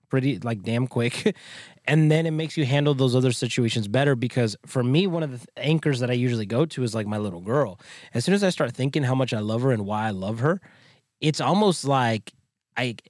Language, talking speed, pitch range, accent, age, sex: English, 235 wpm, 120-155 Hz, American, 20-39, male